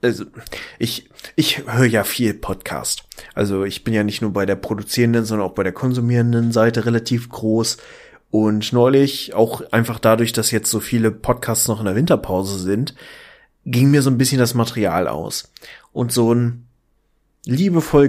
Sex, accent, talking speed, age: male, German, 170 wpm, 30-49